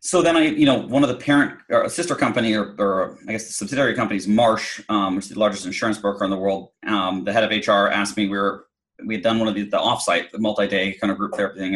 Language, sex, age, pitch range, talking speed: English, male, 30-49, 100-115 Hz, 280 wpm